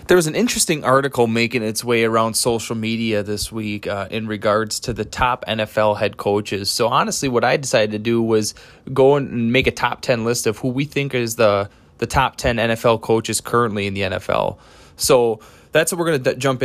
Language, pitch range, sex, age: English, 110-140 Hz, male, 20-39